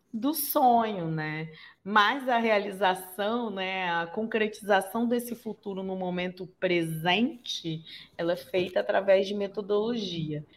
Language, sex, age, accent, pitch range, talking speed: Portuguese, female, 20-39, Brazilian, 175-220 Hz, 115 wpm